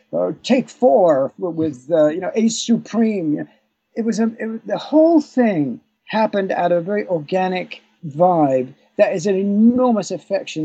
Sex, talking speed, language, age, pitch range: male, 145 wpm, English, 50-69, 155-230 Hz